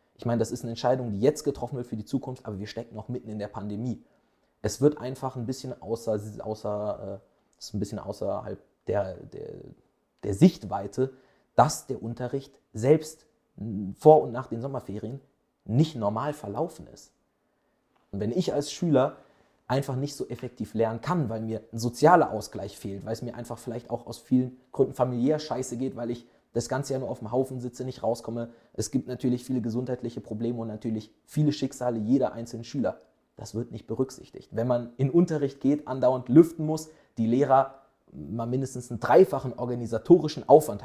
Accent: German